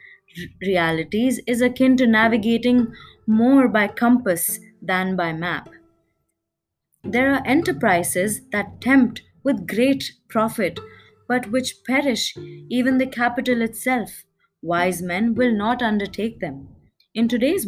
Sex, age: female, 20-39